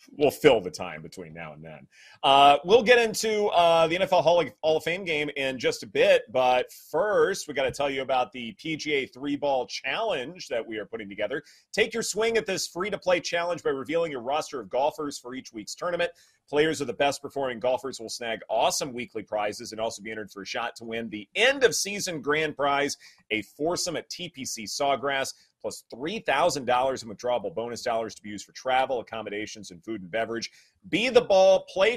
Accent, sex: American, male